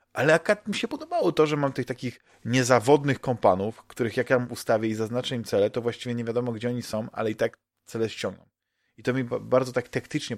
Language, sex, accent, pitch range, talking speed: Polish, male, native, 110-130 Hz, 225 wpm